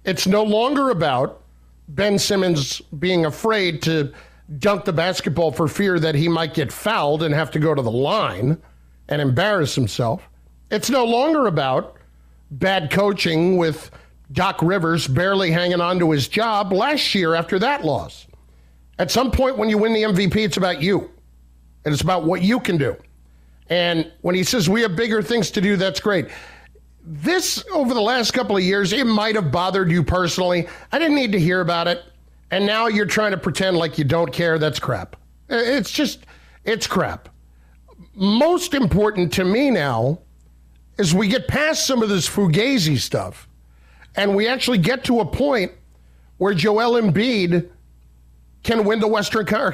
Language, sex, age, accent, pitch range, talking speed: English, male, 50-69, American, 145-210 Hz, 175 wpm